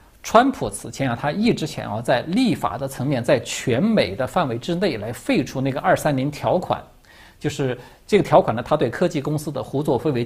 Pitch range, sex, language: 120-160 Hz, male, Chinese